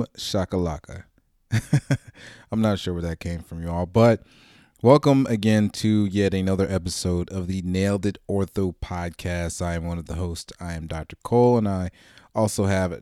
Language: English